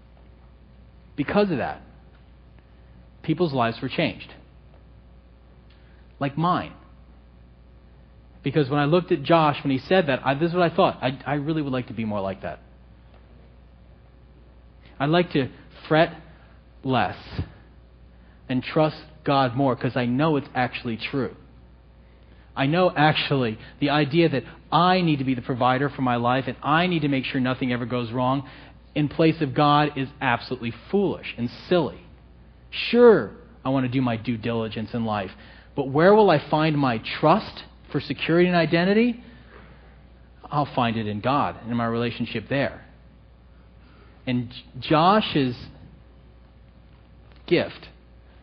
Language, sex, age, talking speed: English, male, 40-59, 145 wpm